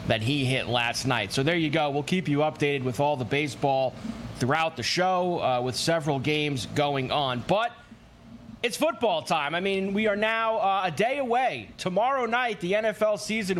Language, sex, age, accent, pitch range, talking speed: English, male, 30-49, American, 145-205 Hz, 195 wpm